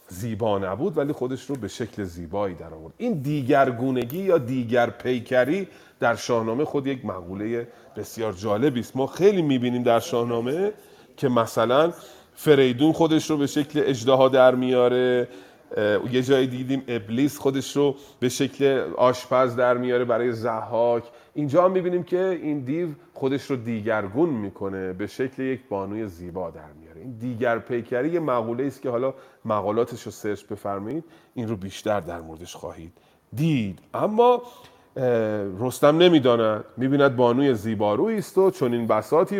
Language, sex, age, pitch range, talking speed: Persian, male, 30-49, 110-150 Hz, 145 wpm